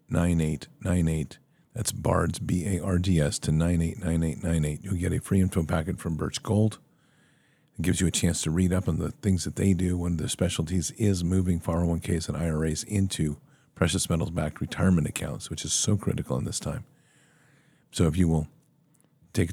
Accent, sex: American, male